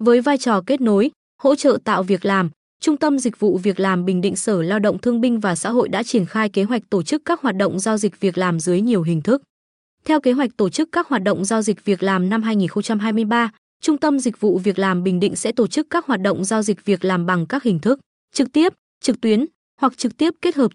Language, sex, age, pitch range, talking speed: Vietnamese, female, 20-39, 195-250 Hz, 255 wpm